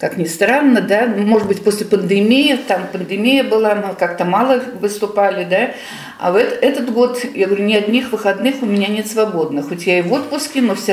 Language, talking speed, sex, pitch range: Russian, 200 wpm, female, 175-240 Hz